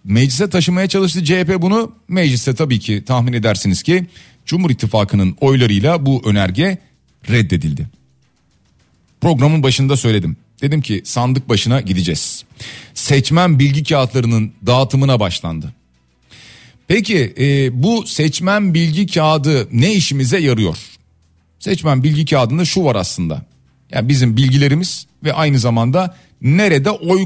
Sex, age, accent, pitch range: male, 40-59, native, 110-165 Hz